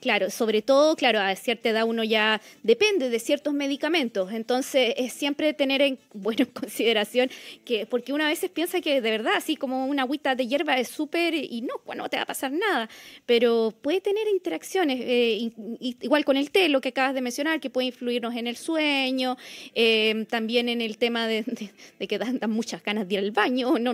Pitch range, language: 240-310 Hz, Spanish